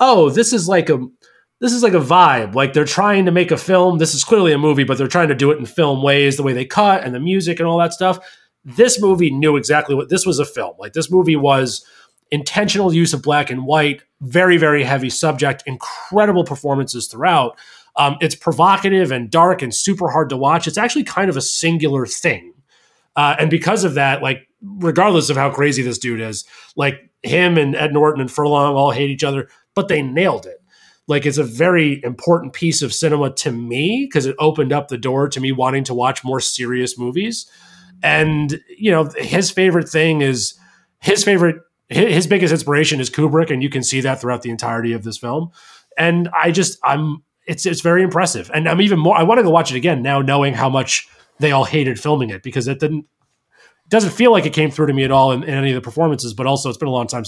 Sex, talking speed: male, 225 wpm